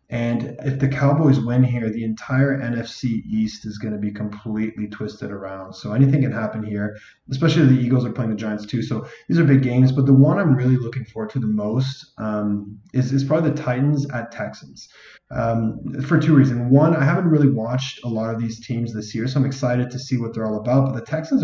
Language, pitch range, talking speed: English, 110-140 Hz, 225 wpm